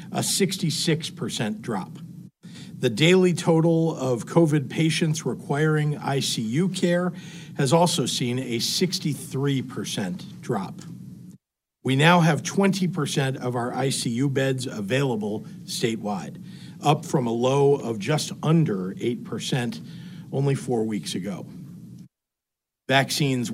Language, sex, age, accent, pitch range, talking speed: English, male, 50-69, American, 135-175 Hz, 105 wpm